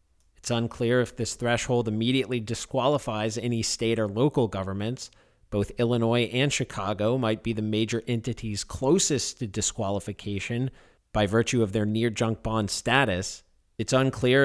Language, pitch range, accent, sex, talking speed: English, 100-125 Hz, American, male, 135 wpm